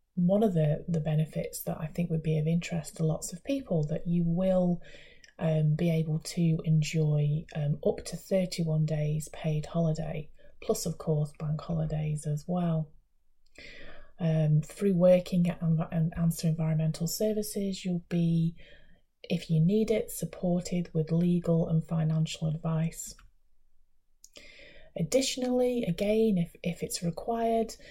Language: English